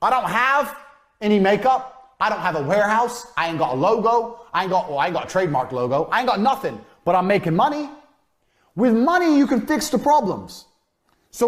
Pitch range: 180-265 Hz